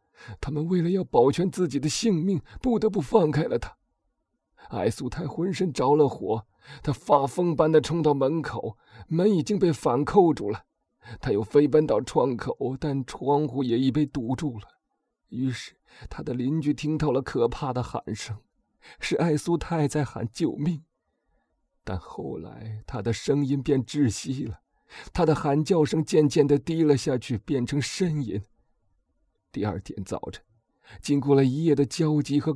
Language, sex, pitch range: Chinese, male, 135-170 Hz